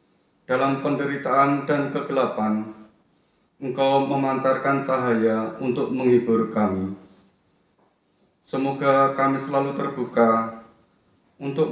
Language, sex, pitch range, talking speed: Indonesian, male, 115-140 Hz, 75 wpm